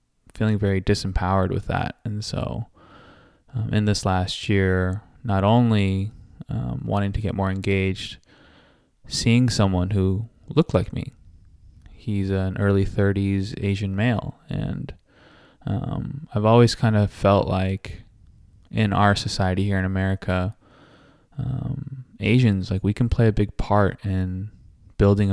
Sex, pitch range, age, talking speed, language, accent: male, 95-110 Hz, 20-39, 130 wpm, English, American